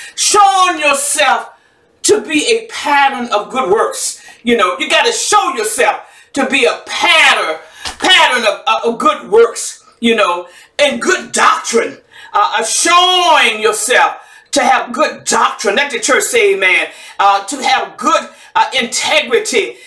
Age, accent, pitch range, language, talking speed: 50-69, American, 270-420 Hz, English, 145 wpm